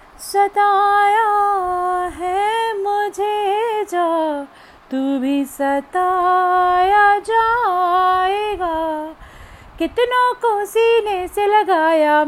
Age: 30-49